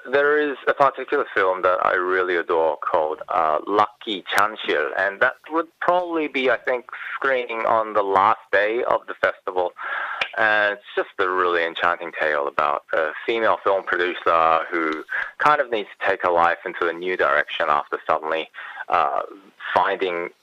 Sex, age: male, 20-39